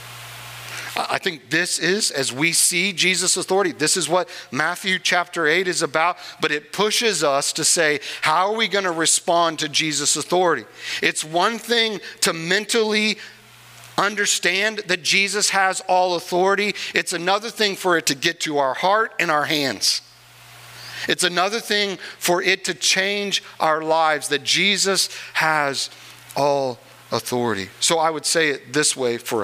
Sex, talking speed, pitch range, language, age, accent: male, 160 wpm, 130-185 Hz, English, 50-69, American